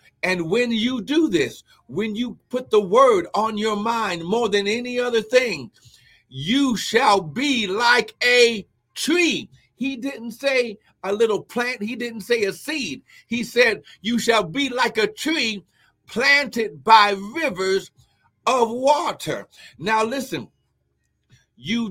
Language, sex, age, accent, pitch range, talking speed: English, male, 60-79, American, 185-245 Hz, 140 wpm